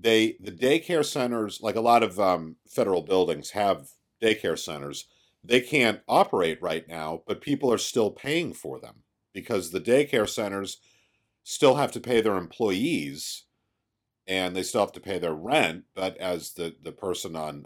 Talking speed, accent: 170 wpm, American